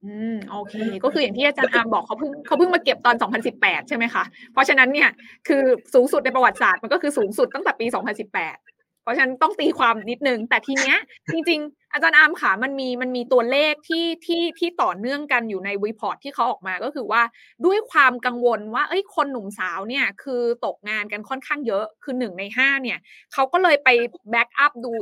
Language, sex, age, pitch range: Thai, female, 20-39, 225-300 Hz